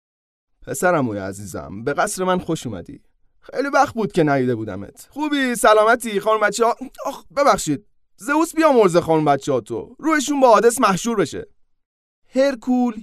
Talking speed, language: 145 wpm, Persian